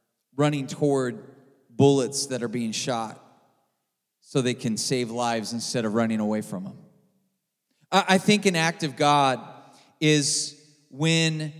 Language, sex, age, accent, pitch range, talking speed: English, male, 30-49, American, 145-195 Hz, 135 wpm